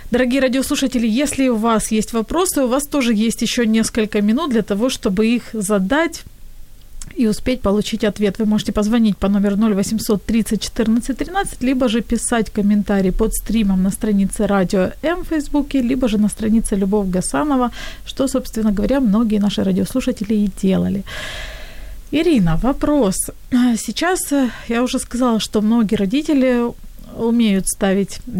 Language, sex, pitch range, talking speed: Ukrainian, female, 210-255 Hz, 145 wpm